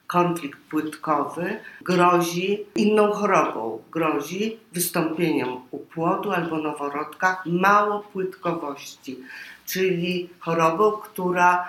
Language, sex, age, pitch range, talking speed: Polish, female, 50-69, 165-195 Hz, 80 wpm